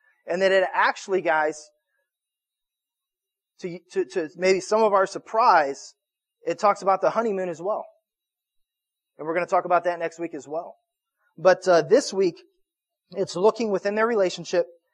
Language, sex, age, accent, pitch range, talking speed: English, male, 30-49, American, 170-225 Hz, 160 wpm